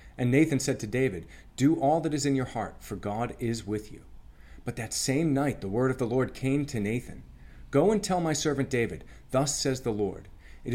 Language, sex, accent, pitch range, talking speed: English, male, American, 95-135 Hz, 225 wpm